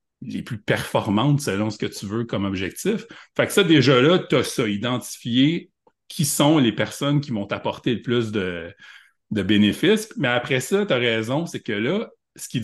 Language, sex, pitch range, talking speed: French, male, 110-150 Hz, 205 wpm